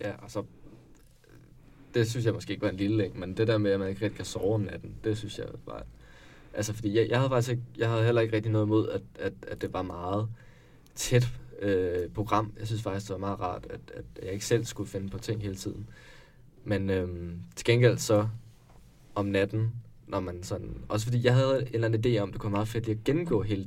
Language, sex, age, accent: Danish, male, 20-39, native